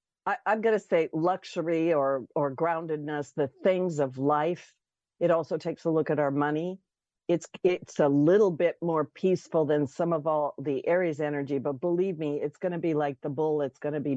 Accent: American